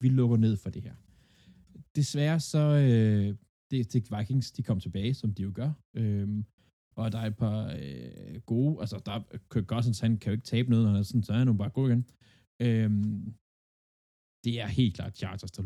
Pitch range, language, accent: 105-125 Hz, Danish, native